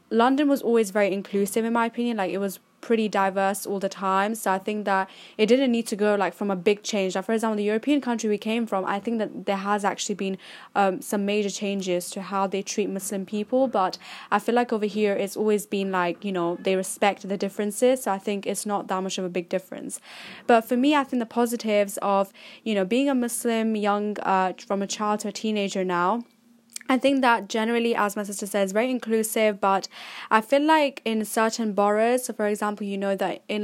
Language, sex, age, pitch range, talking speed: English, female, 10-29, 195-225 Hz, 225 wpm